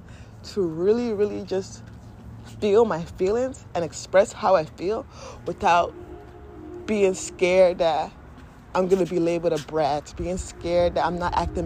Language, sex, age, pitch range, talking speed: English, female, 20-39, 170-225 Hz, 145 wpm